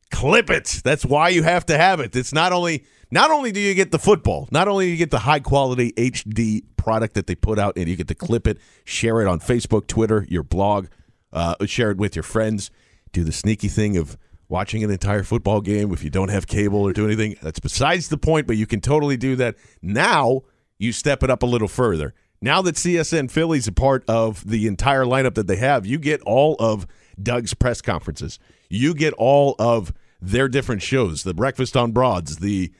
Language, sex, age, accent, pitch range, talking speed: English, male, 40-59, American, 100-140 Hz, 220 wpm